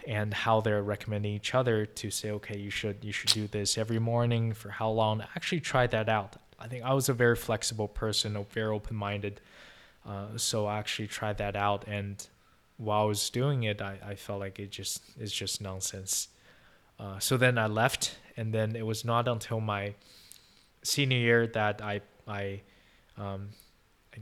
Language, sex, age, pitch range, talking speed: English, male, 20-39, 100-115 Hz, 190 wpm